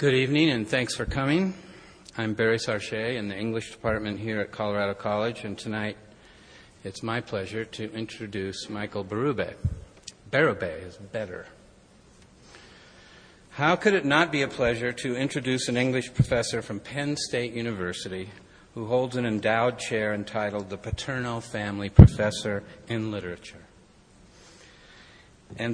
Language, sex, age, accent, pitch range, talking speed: English, male, 50-69, American, 105-125 Hz, 135 wpm